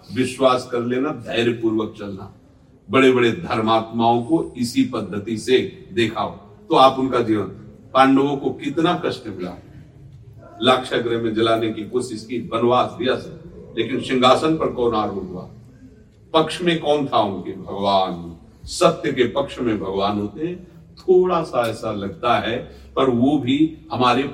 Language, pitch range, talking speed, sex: Hindi, 100-135 Hz, 140 wpm, male